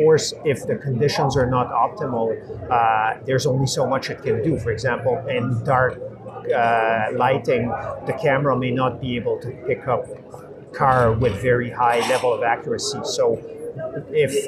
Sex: male